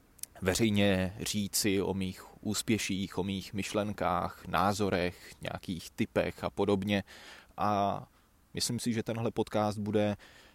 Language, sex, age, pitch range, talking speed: Czech, male, 20-39, 95-105 Hz, 115 wpm